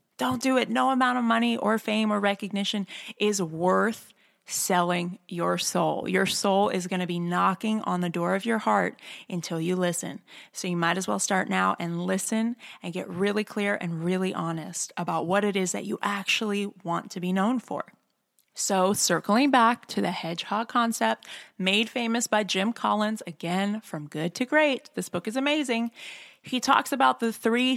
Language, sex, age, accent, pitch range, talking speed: English, female, 20-39, American, 180-225 Hz, 185 wpm